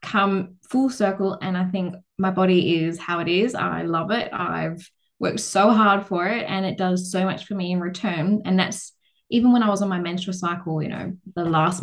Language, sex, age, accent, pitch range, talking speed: English, female, 10-29, Australian, 175-200 Hz, 225 wpm